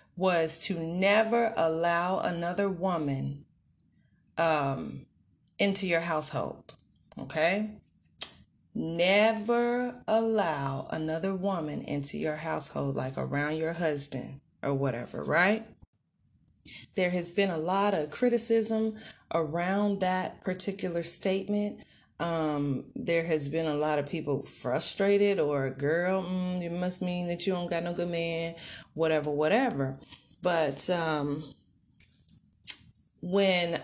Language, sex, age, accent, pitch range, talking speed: English, female, 30-49, American, 150-195 Hz, 110 wpm